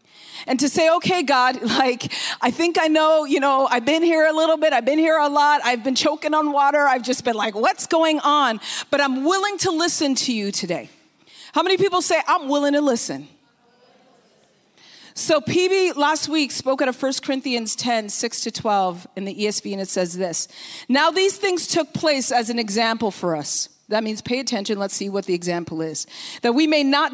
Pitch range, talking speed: 205-290 Hz, 210 wpm